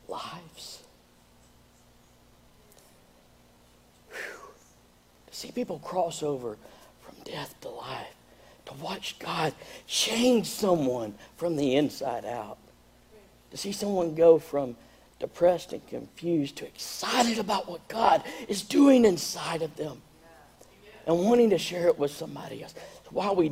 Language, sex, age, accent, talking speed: English, male, 60-79, American, 120 wpm